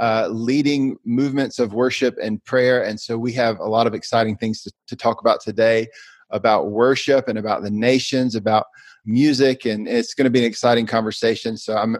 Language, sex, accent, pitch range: English, male, American, 115-130 Hz